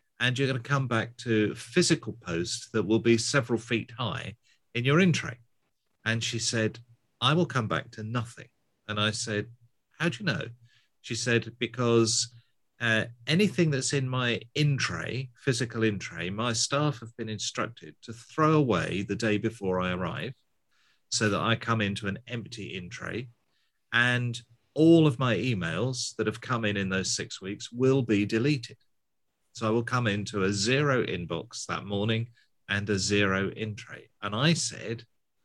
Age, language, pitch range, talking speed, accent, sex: 40-59, English, 105-130 Hz, 170 wpm, British, male